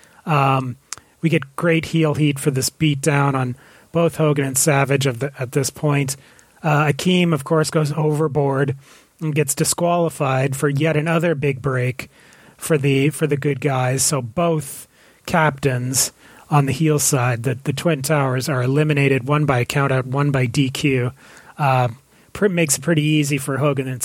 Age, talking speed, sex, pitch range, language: 30-49, 175 wpm, male, 130-155 Hz, English